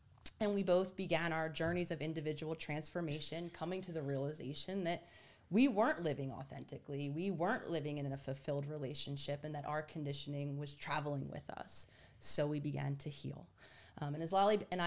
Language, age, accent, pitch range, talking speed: English, 30-49, American, 150-190 Hz, 175 wpm